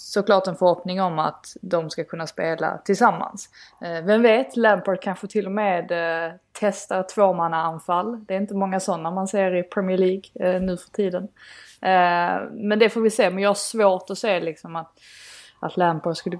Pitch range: 165-195 Hz